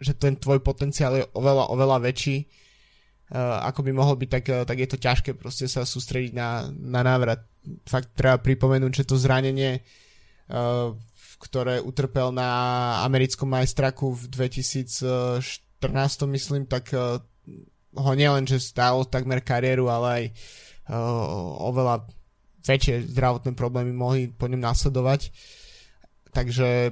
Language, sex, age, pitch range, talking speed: Slovak, male, 20-39, 125-140 Hz, 120 wpm